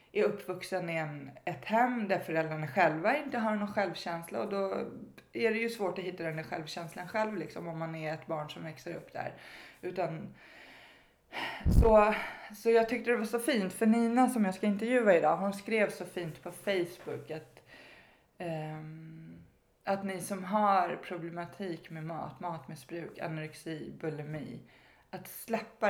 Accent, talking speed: native, 165 wpm